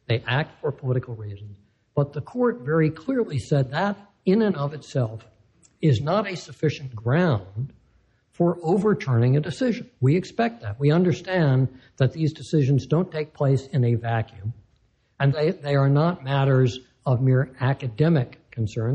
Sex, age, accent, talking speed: male, 60-79, American, 155 wpm